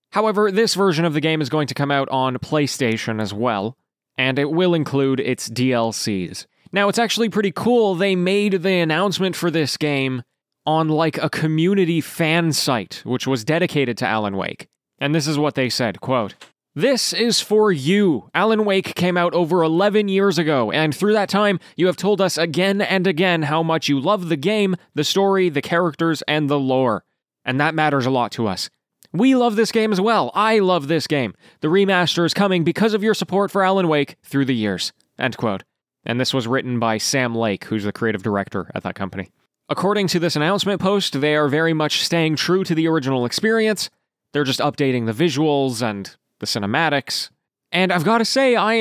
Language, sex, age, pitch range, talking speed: English, male, 20-39, 135-195 Hz, 200 wpm